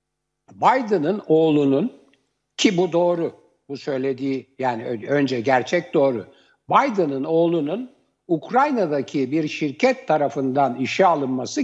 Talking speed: 100 wpm